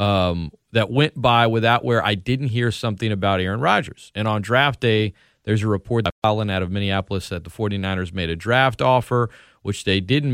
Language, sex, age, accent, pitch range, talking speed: English, male, 40-59, American, 95-120 Hz, 195 wpm